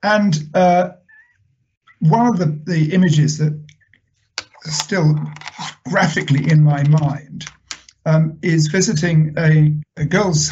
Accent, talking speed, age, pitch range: British, 115 wpm, 50-69, 145-160 Hz